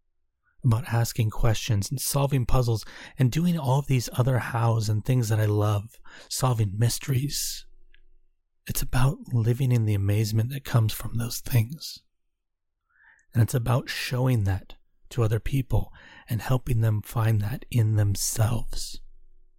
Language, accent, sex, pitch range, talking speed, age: English, American, male, 105-130 Hz, 140 wpm, 30-49